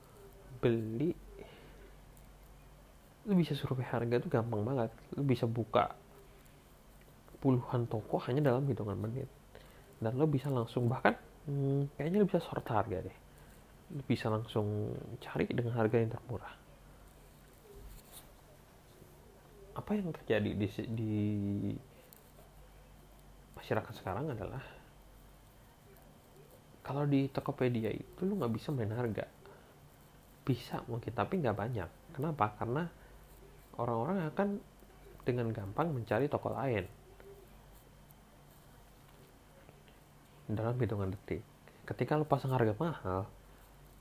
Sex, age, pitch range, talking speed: male, 30-49, 105-135 Hz, 105 wpm